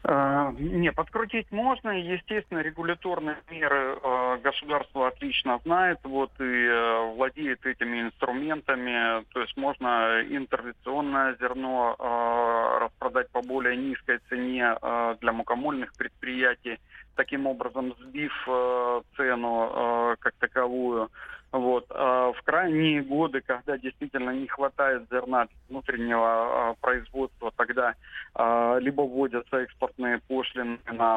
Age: 30-49